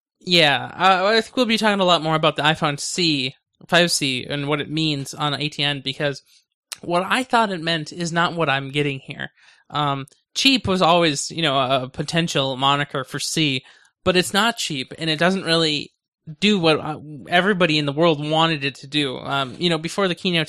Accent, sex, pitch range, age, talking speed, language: American, male, 140-175 Hz, 20-39, 195 wpm, English